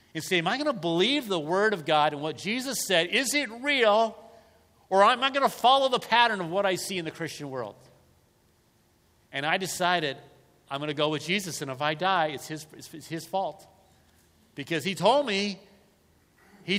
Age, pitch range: 50-69, 130-190 Hz